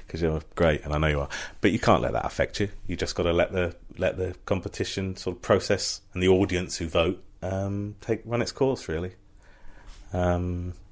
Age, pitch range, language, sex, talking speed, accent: 30-49, 80-100 Hz, English, male, 215 wpm, British